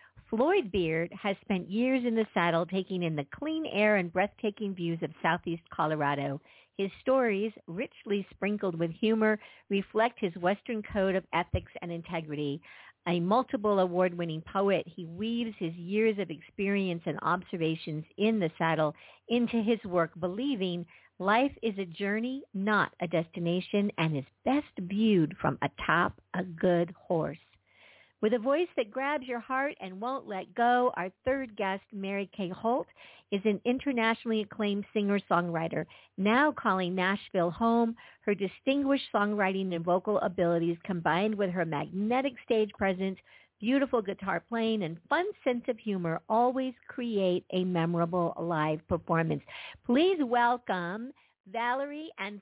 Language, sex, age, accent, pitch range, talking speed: English, female, 50-69, American, 175-235 Hz, 140 wpm